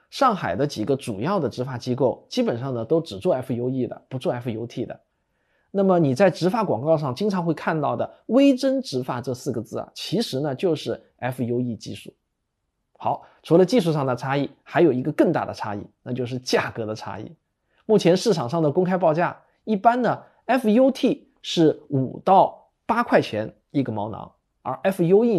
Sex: male